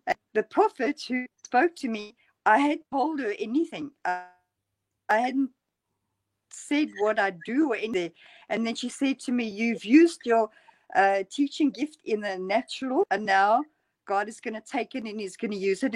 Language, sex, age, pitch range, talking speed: English, female, 50-69, 200-295 Hz, 185 wpm